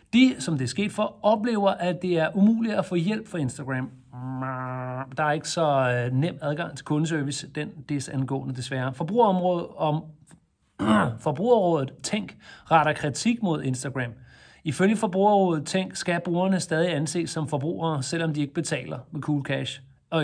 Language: Danish